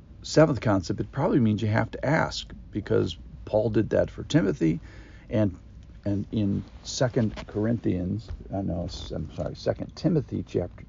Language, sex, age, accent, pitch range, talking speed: English, male, 50-69, American, 90-115 Hz, 150 wpm